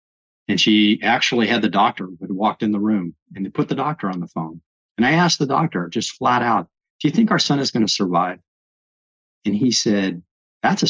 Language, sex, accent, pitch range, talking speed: English, male, American, 90-120 Hz, 225 wpm